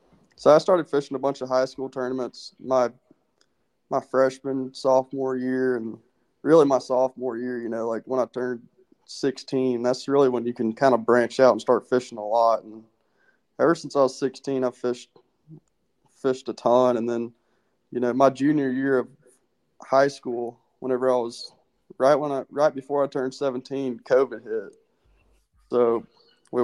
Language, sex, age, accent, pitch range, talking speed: English, male, 20-39, American, 120-135 Hz, 175 wpm